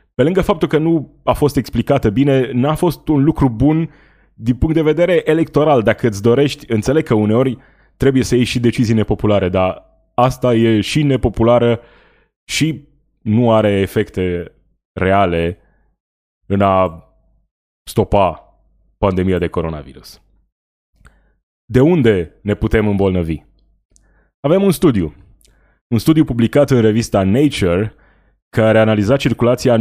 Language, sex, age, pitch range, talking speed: Romanian, male, 20-39, 95-130 Hz, 130 wpm